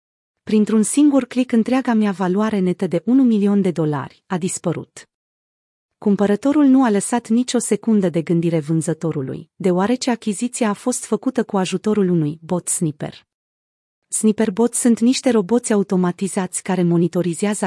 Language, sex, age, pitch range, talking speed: Romanian, female, 30-49, 175-225 Hz, 135 wpm